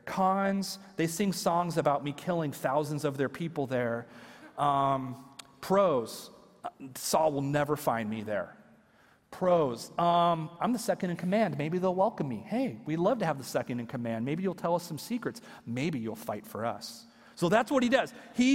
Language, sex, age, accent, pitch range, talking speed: English, male, 40-59, American, 150-225 Hz, 185 wpm